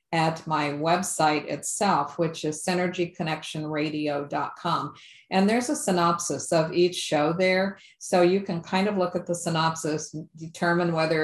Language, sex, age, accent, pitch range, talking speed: English, female, 50-69, American, 150-175 Hz, 140 wpm